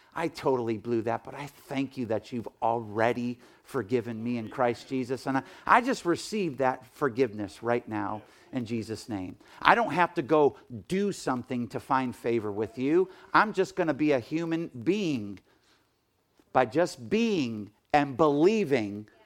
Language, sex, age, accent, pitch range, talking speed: English, male, 50-69, American, 120-160 Hz, 160 wpm